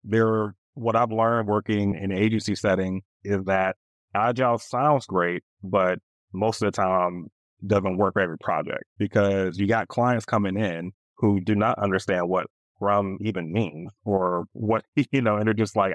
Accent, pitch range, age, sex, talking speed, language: American, 95-110 Hz, 30-49, male, 175 wpm, English